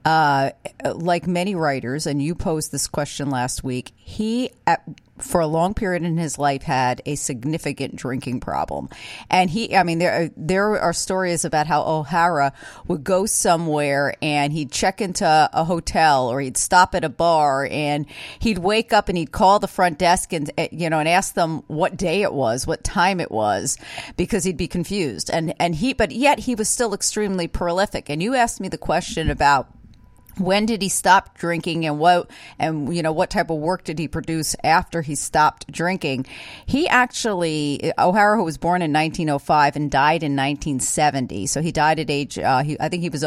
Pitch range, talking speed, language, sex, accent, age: 145-185 Hz, 195 wpm, English, female, American, 40-59